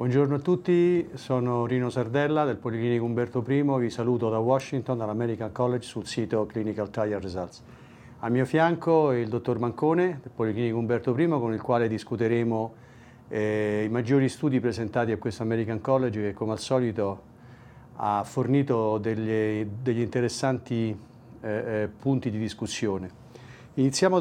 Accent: Italian